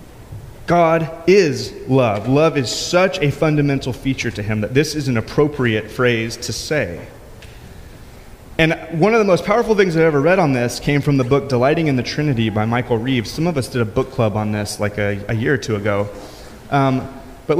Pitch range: 120-170 Hz